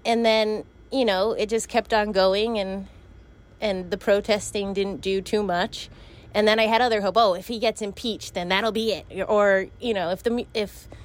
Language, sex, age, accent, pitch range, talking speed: Danish, female, 20-39, American, 190-235 Hz, 205 wpm